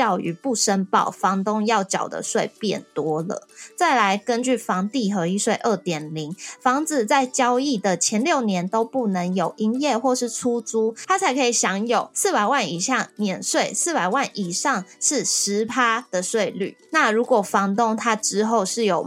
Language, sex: Chinese, female